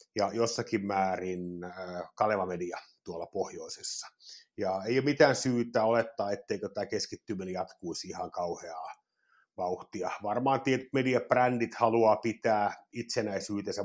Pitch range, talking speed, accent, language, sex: 105-130 Hz, 115 wpm, native, Finnish, male